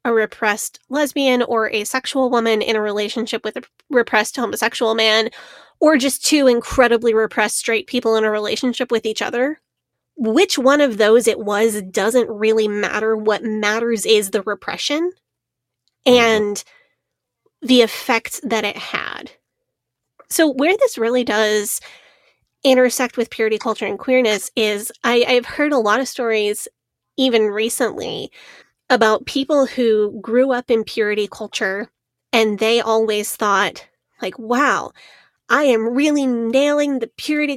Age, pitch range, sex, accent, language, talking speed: 20-39, 220-260 Hz, female, American, English, 140 wpm